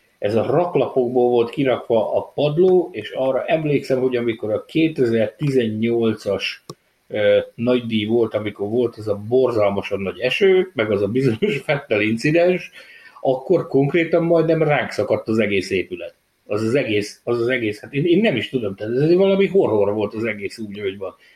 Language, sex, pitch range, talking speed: Hungarian, male, 115-165 Hz, 170 wpm